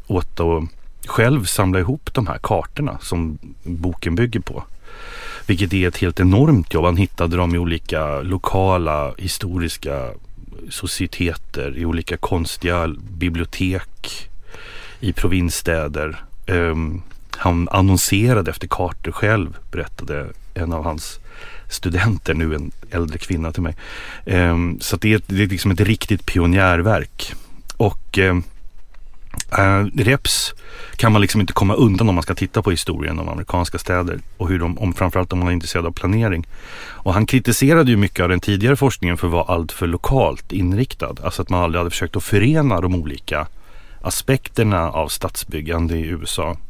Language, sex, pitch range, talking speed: English, male, 85-100 Hz, 145 wpm